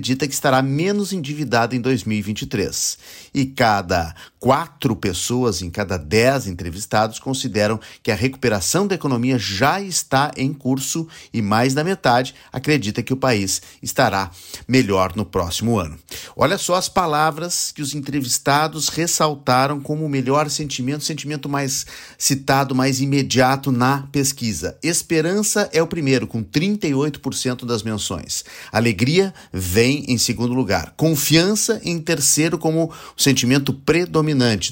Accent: Brazilian